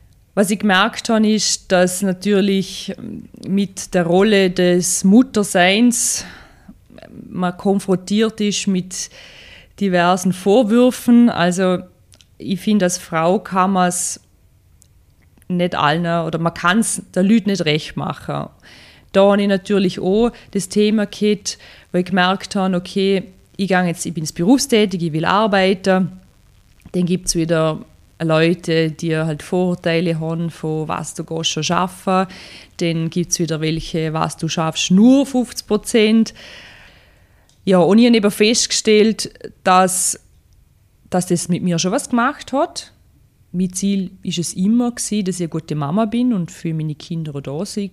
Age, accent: 20-39, German